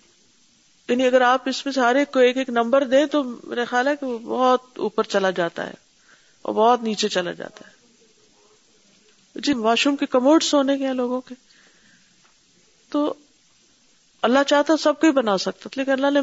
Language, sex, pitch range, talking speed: Urdu, female, 215-285 Hz, 190 wpm